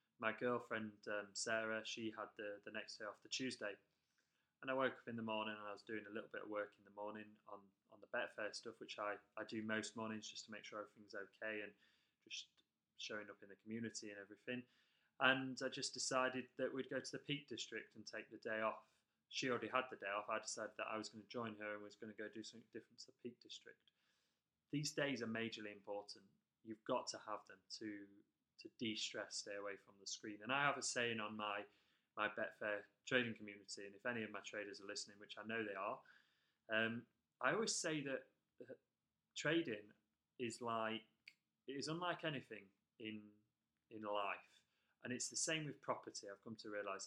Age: 20-39